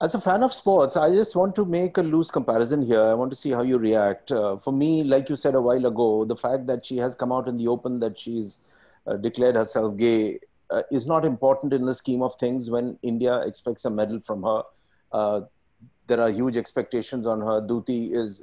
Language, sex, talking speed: English, male, 230 wpm